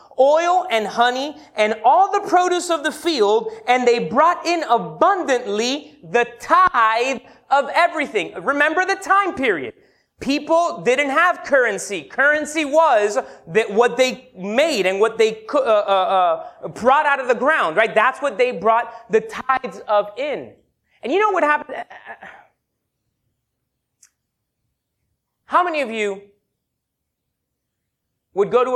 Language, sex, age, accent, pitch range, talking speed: English, male, 30-49, American, 200-305 Hz, 140 wpm